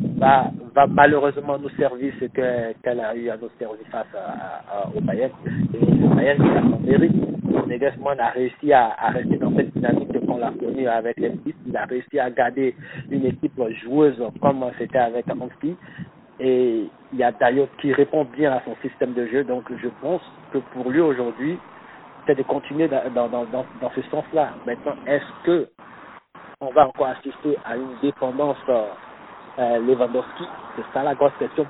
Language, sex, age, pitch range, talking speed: French, male, 60-79, 120-140 Hz, 180 wpm